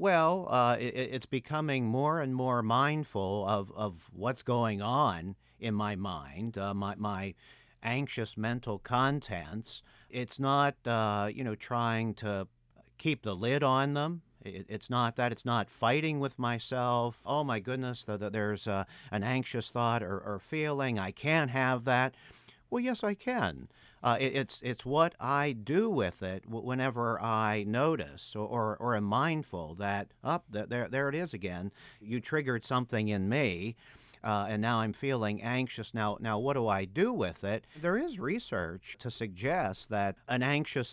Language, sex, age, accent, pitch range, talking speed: English, male, 50-69, American, 105-135 Hz, 170 wpm